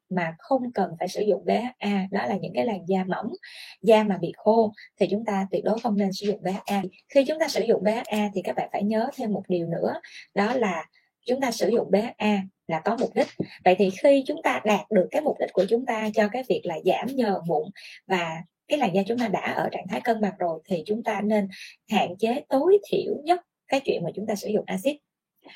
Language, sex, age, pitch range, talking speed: Vietnamese, female, 20-39, 190-235 Hz, 245 wpm